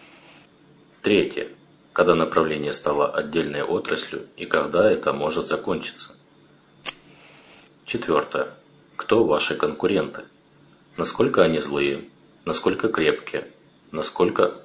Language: Russian